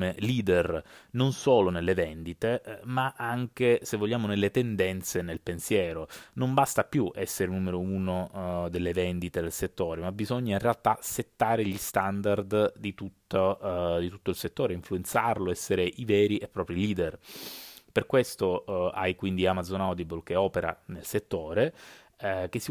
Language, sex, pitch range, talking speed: Italian, male, 90-120 Hz, 145 wpm